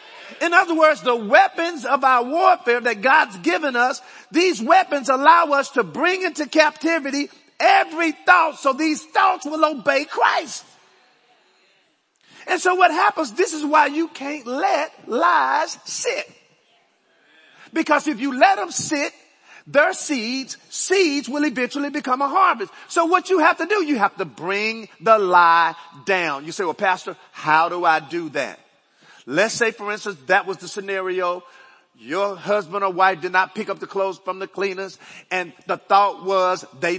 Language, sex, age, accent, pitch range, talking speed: English, male, 40-59, American, 200-330 Hz, 165 wpm